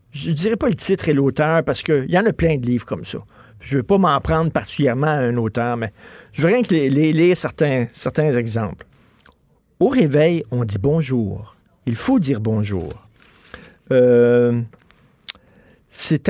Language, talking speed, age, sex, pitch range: French, 190 wpm, 50-69, male, 115-160 Hz